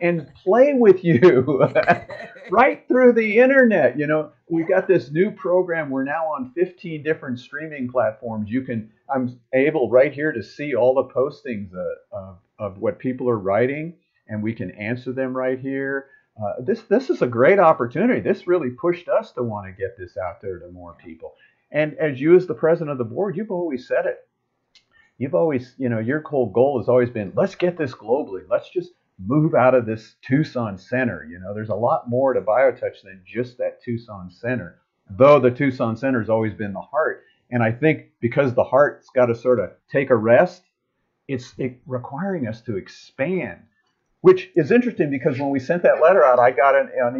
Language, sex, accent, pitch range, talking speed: English, male, American, 120-175 Hz, 200 wpm